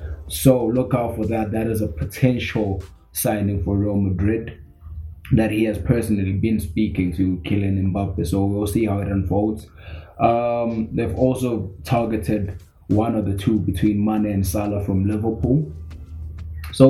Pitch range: 90-110 Hz